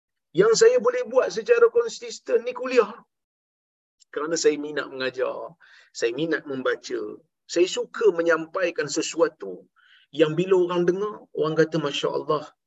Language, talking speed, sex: Malayalam, 125 wpm, male